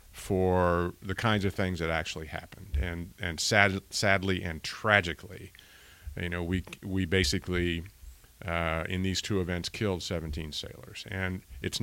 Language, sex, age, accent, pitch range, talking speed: English, male, 50-69, American, 85-100 Hz, 145 wpm